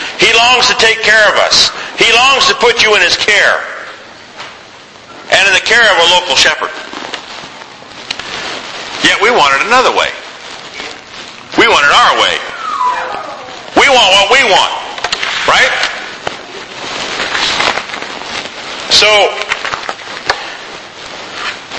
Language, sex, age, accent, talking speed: English, male, 50-69, American, 115 wpm